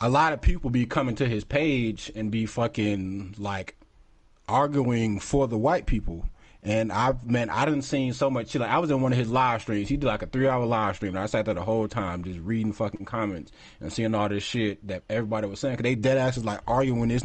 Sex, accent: male, American